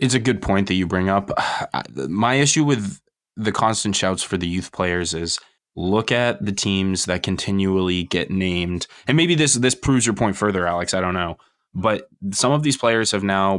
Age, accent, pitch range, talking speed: 20-39, American, 90-105 Hz, 205 wpm